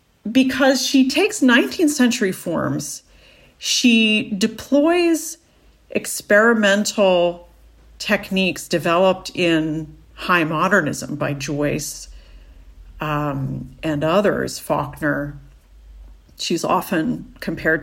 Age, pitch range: 40-59, 150-205 Hz